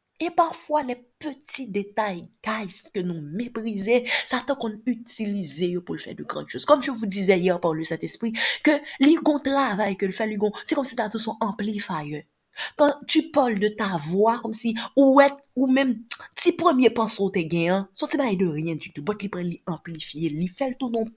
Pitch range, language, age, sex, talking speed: 185-250 Hz, French, 30-49, female, 205 wpm